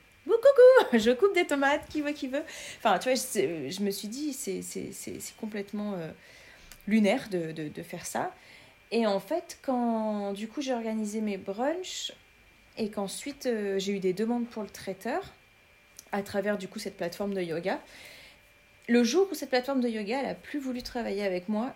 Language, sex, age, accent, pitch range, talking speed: French, female, 30-49, French, 195-255 Hz, 195 wpm